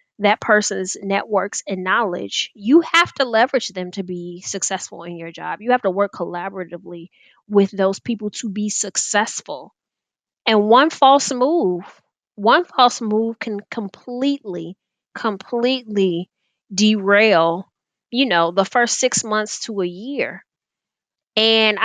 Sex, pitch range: female, 185-230 Hz